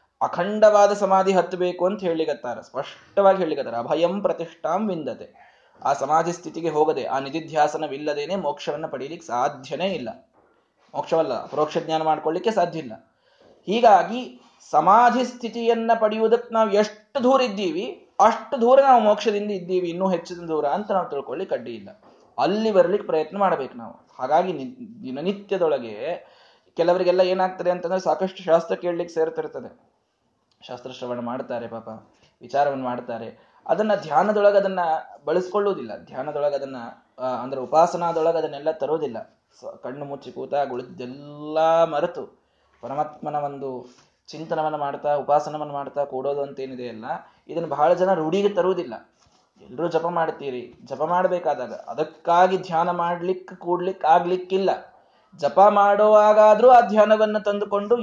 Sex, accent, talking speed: male, native, 115 wpm